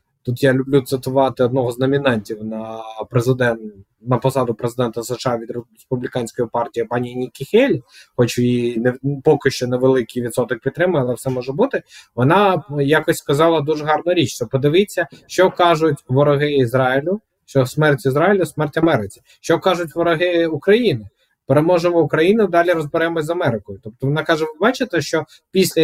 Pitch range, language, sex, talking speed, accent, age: 125-165 Hz, Ukrainian, male, 150 wpm, native, 20-39